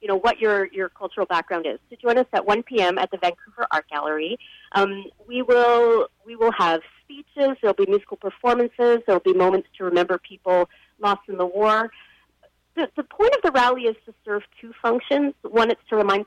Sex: female